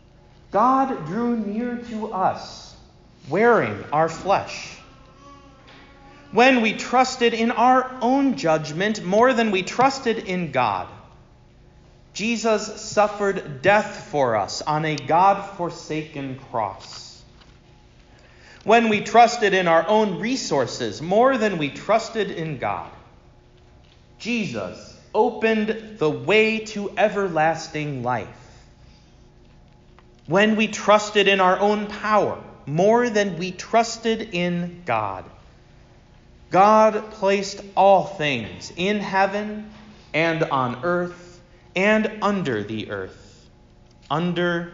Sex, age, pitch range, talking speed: male, 40-59, 150-215 Hz, 105 wpm